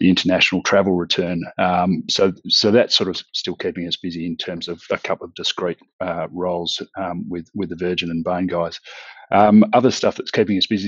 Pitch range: 85-95 Hz